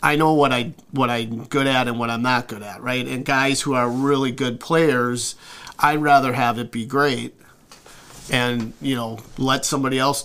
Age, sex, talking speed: 40-59, male, 200 wpm